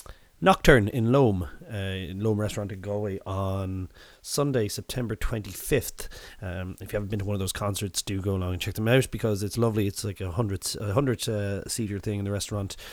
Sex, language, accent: male, English, Irish